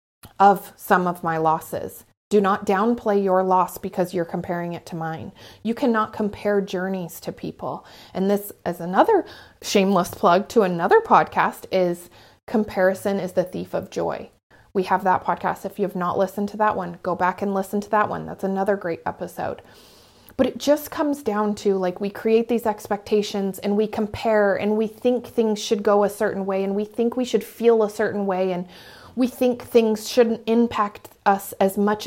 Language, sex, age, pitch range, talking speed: English, female, 30-49, 185-225 Hz, 190 wpm